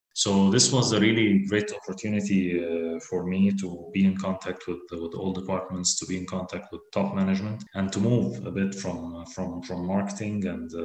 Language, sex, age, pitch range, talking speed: English, male, 30-49, 90-100 Hz, 200 wpm